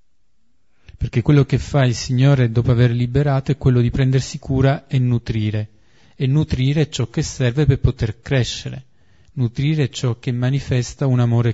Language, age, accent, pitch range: Italian, 40-59, native, 110-135 Hz